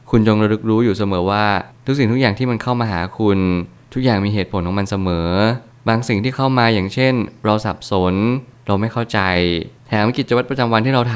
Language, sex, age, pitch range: Thai, male, 20-39, 100-120 Hz